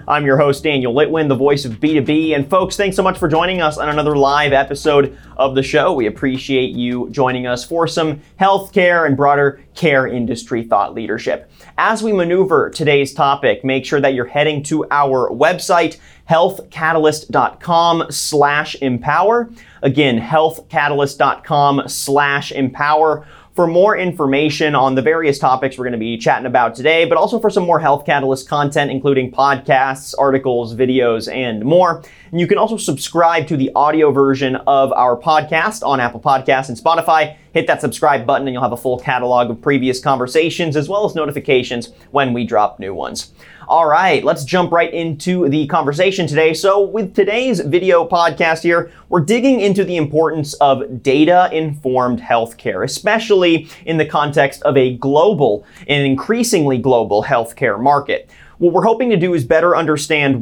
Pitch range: 135-170 Hz